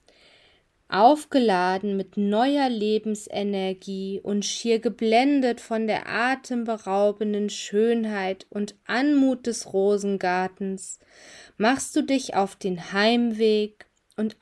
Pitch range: 190-235 Hz